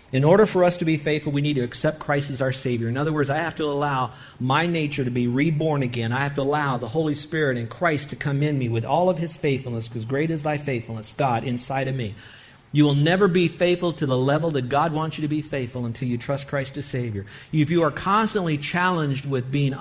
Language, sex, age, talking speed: English, male, 50-69, 250 wpm